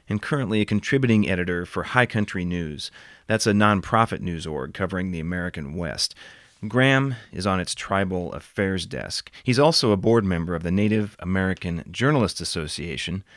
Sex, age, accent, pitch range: male, 30-49, American, 90-115 Hz